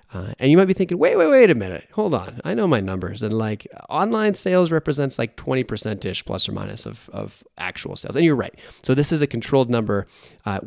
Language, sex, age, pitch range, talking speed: English, male, 20-39, 100-135 Hz, 235 wpm